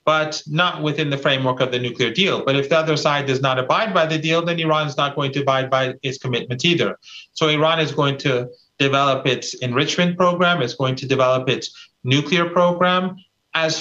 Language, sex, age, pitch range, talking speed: English, male, 40-59, 135-180 Hz, 210 wpm